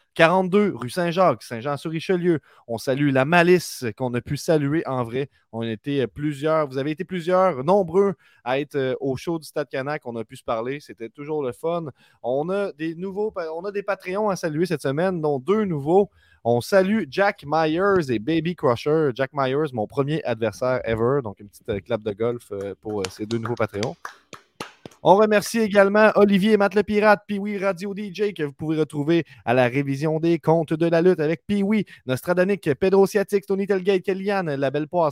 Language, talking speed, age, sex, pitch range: French, 190 wpm, 30-49, male, 140-190 Hz